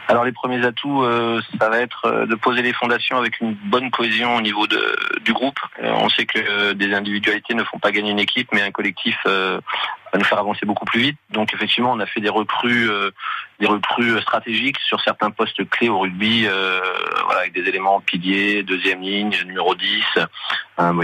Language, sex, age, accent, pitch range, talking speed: French, male, 30-49, French, 100-115 Hz, 210 wpm